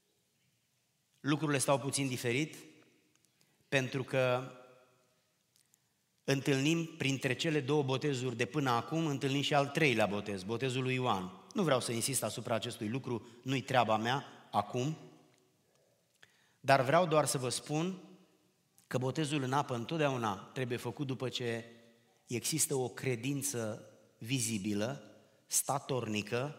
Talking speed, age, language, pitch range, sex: 120 wpm, 30-49, Romanian, 120-150 Hz, male